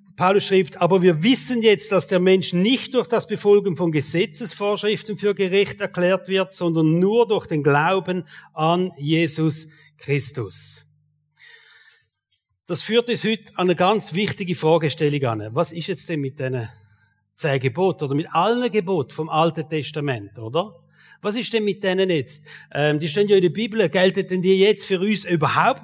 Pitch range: 160-210 Hz